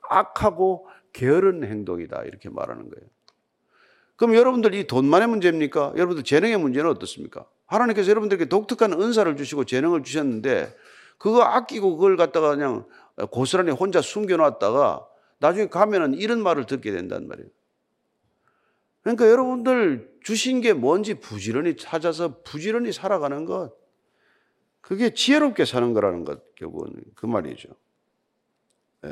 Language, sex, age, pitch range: Korean, male, 50-69, 170-235 Hz